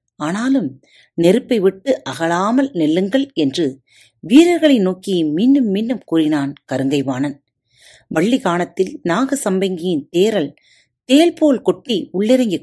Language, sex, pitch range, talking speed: Tamil, female, 150-250 Hz, 95 wpm